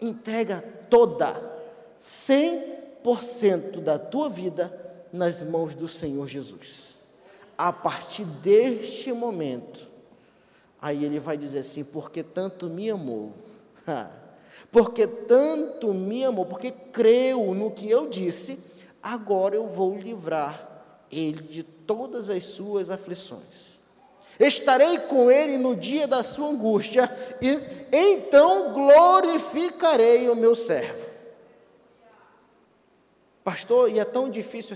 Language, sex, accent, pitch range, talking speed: Portuguese, male, Brazilian, 185-260 Hz, 110 wpm